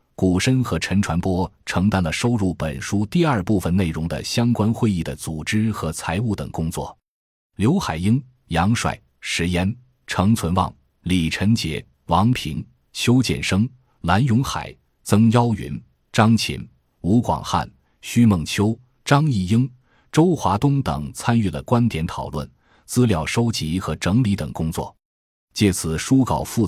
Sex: male